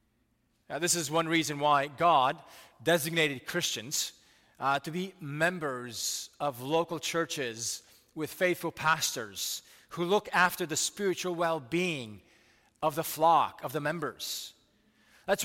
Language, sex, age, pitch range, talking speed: English, male, 30-49, 155-205 Hz, 120 wpm